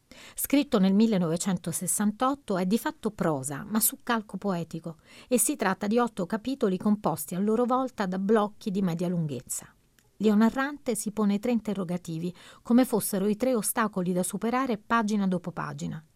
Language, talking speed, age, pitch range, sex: Italian, 150 wpm, 40-59, 180-220 Hz, female